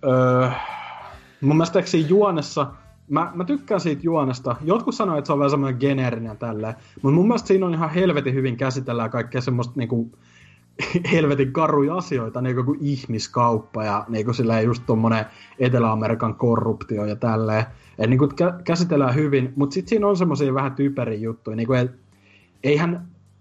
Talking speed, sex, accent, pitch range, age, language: 155 wpm, male, native, 115-140 Hz, 30-49, Finnish